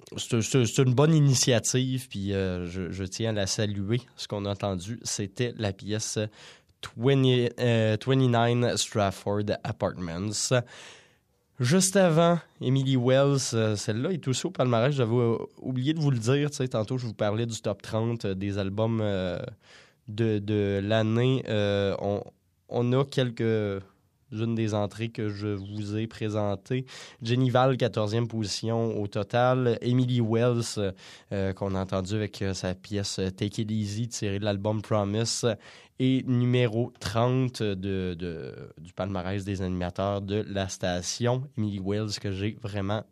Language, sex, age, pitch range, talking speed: French, male, 20-39, 100-125 Hz, 140 wpm